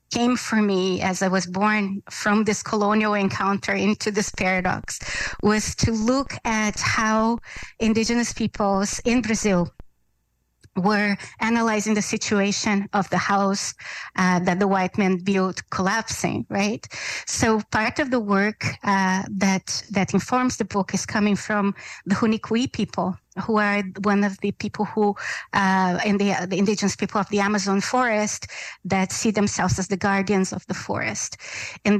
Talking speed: 155 wpm